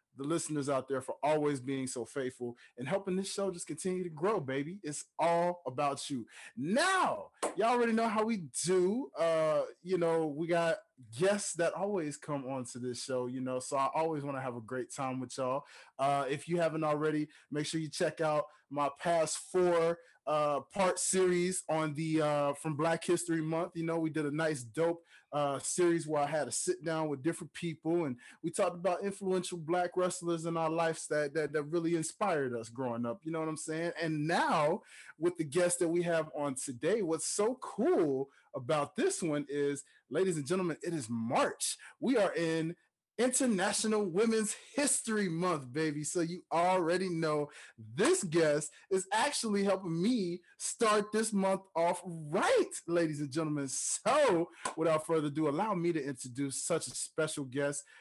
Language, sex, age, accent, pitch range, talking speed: English, male, 20-39, American, 145-180 Hz, 185 wpm